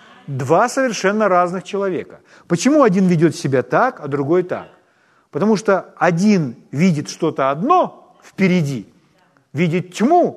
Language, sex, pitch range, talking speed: Ukrainian, male, 165-235 Hz, 120 wpm